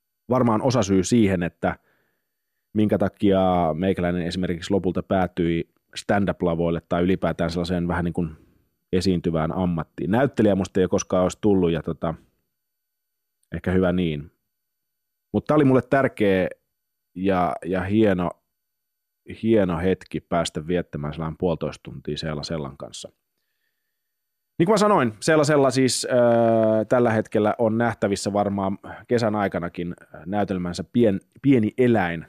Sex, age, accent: male, 30-49, native